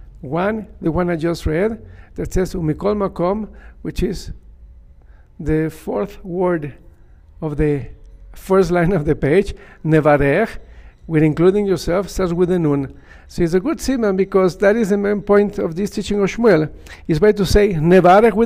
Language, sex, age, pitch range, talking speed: English, male, 50-69, 150-200 Hz, 155 wpm